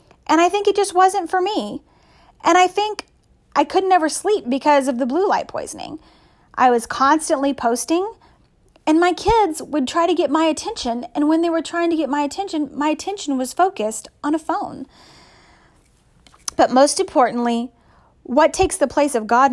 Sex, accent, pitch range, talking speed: female, American, 255-350 Hz, 180 wpm